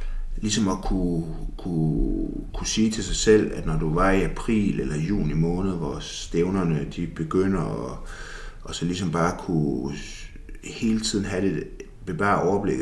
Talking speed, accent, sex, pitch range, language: 165 wpm, native, male, 80-95 Hz, Danish